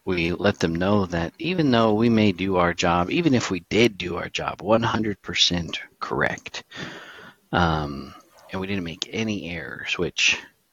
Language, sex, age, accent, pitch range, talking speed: English, male, 40-59, American, 85-100 Hz, 160 wpm